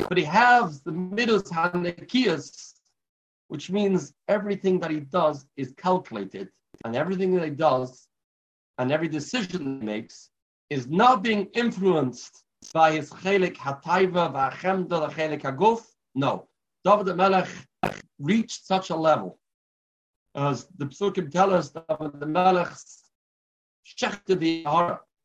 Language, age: English, 50-69